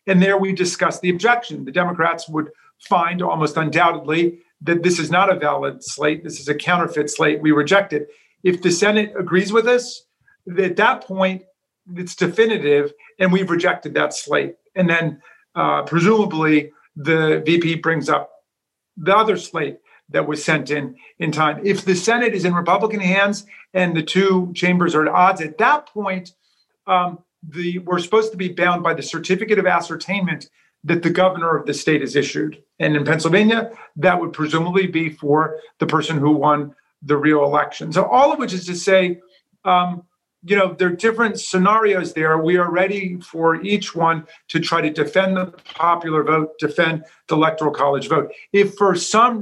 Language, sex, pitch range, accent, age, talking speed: English, male, 155-190 Hz, American, 50-69, 175 wpm